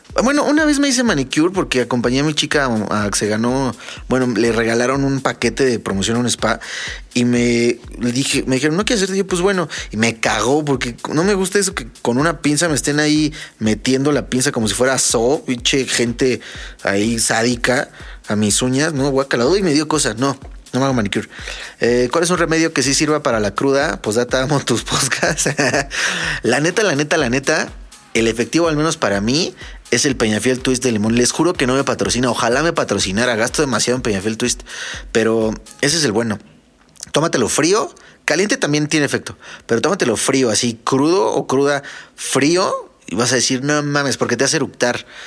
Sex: male